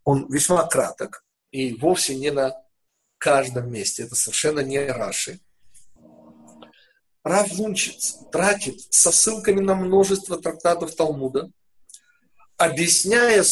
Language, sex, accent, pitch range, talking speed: Russian, male, native, 130-185 Hz, 100 wpm